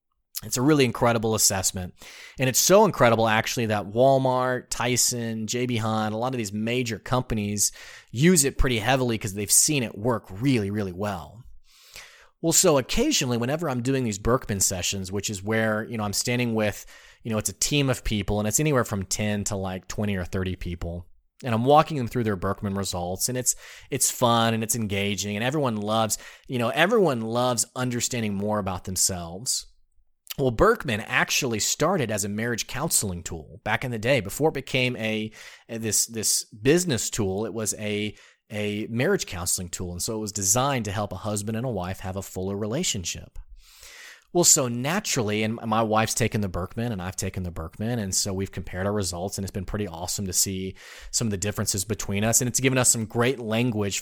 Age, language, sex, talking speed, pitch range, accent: 30-49, English, male, 200 wpm, 100-125 Hz, American